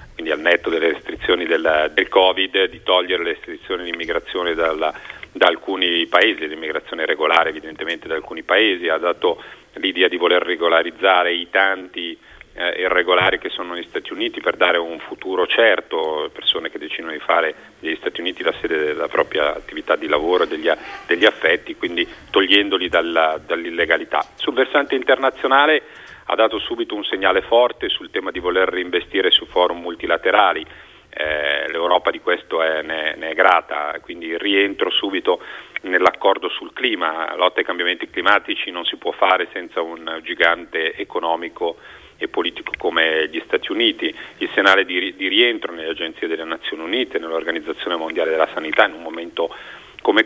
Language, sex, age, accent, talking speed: Italian, male, 40-59, native, 160 wpm